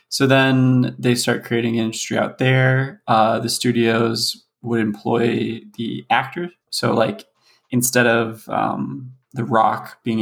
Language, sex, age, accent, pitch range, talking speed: English, male, 20-39, American, 115-130 Hz, 135 wpm